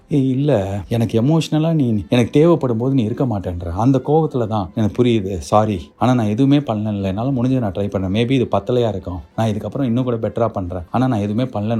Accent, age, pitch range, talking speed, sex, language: native, 30-49, 110-155 Hz, 200 wpm, male, Tamil